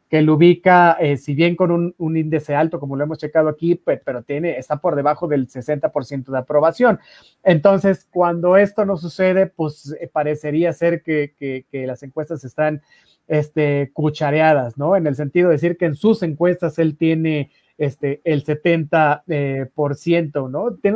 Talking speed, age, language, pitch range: 180 wpm, 30-49, Spanish, 150-185 Hz